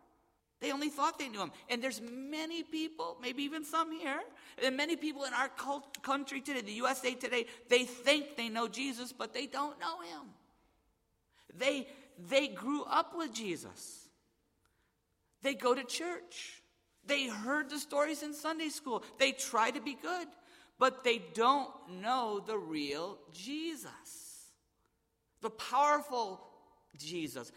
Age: 50-69